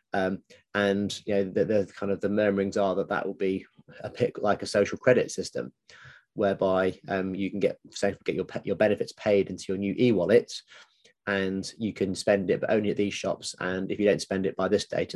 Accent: British